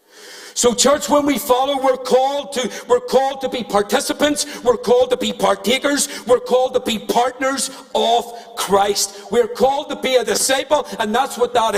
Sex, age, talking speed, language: male, 50-69, 170 wpm, English